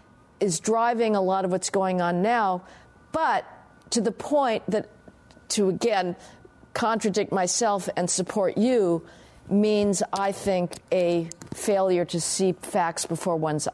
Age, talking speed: 50-69, 135 wpm